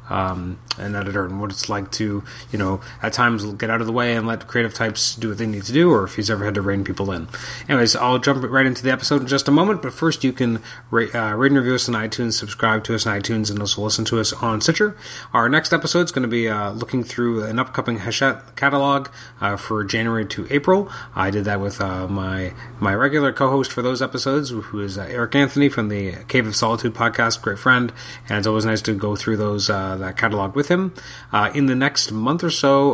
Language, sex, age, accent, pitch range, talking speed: English, male, 30-49, American, 105-125 Hz, 245 wpm